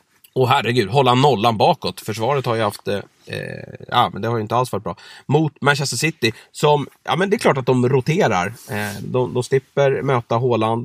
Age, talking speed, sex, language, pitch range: 30-49, 205 wpm, male, Swedish, 115-150 Hz